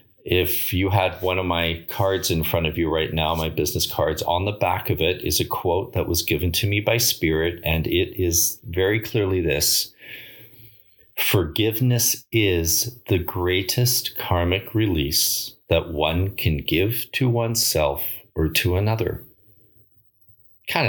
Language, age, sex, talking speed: English, 40-59, male, 150 wpm